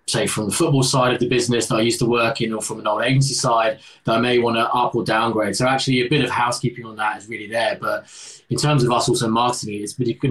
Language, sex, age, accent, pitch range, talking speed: English, male, 20-39, British, 105-120 Hz, 280 wpm